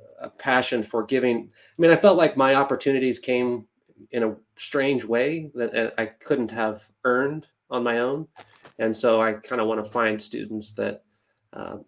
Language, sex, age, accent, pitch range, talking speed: English, male, 30-49, American, 115-130 Hz, 175 wpm